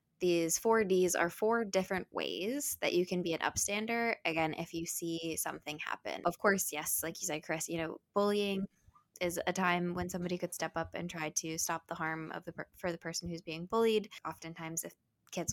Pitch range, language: 165-200 Hz, English